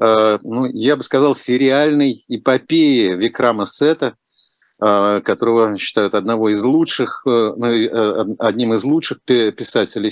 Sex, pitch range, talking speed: male, 110-150 Hz, 100 wpm